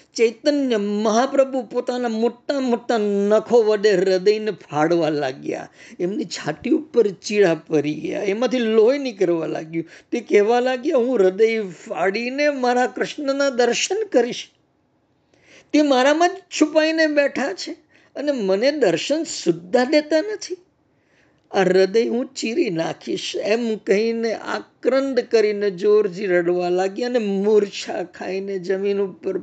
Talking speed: 100 wpm